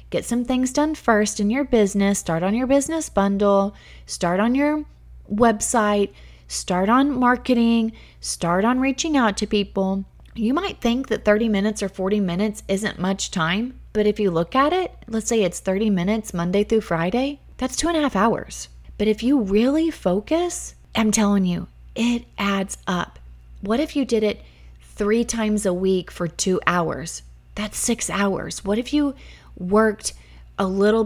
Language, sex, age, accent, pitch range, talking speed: English, female, 30-49, American, 175-225 Hz, 175 wpm